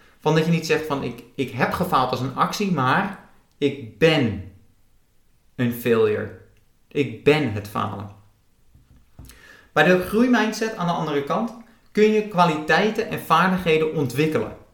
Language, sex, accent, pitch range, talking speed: Dutch, male, Dutch, 125-190 Hz, 145 wpm